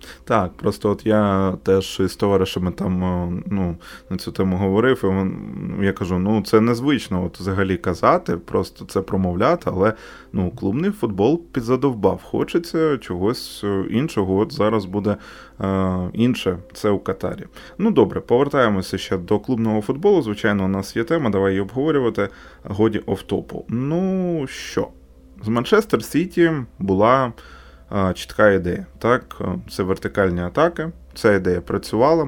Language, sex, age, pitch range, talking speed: Ukrainian, male, 20-39, 95-120 Hz, 125 wpm